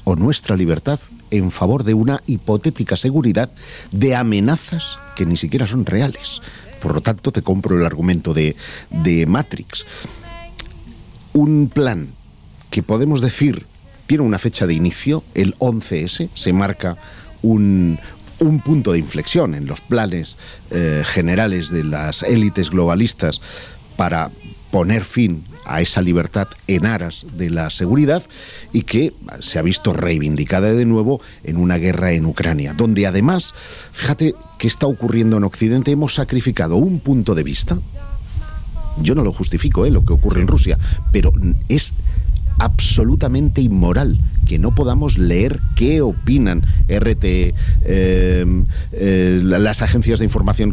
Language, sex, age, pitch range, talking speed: Spanish, male, 50-69, 85-115 Hz, 140 wpm